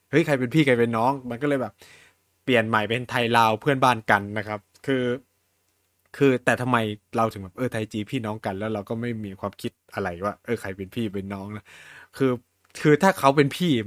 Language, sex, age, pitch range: Thai, male, 20-39, 100-135 Hz